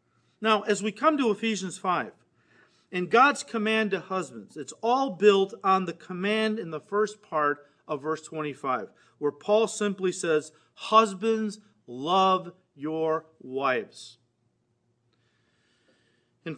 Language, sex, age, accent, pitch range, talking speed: English, male, 40-59, American, 160-225 Hz, 125 wpm